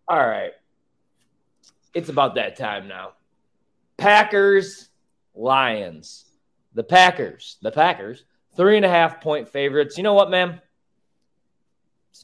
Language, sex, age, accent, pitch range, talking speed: English, male, 30-49, American, 100-155 Hz, 120 wpm